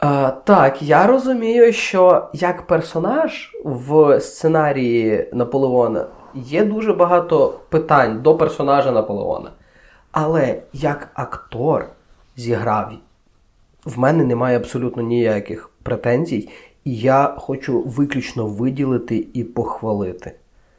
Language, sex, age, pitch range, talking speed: Ukrainian, male, 20-39, 125-180 Hz, 95 wpm